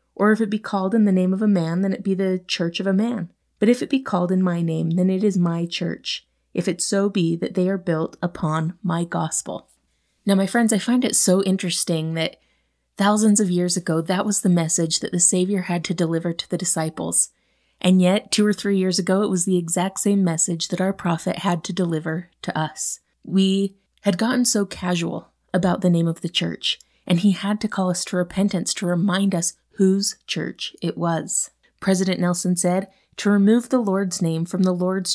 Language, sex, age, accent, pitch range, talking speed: English, female, 30-49, American, 170-200 Hz, 215 wpm